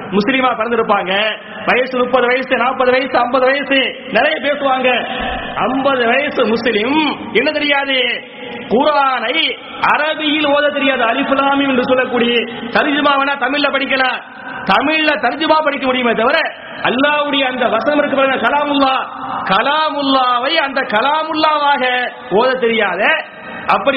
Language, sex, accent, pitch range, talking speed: English, male, Indian, 245-285 Hz, 110 wpm